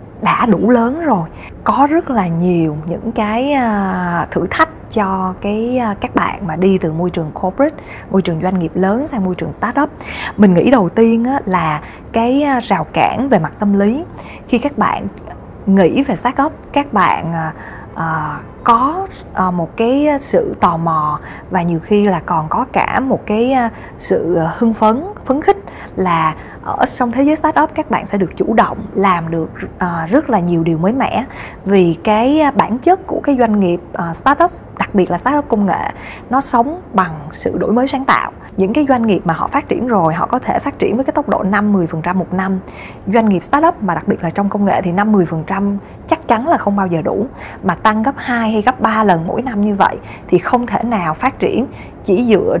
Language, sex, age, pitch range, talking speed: Vietnamese, female, 20-39, 180-250 Hz, 205 wpm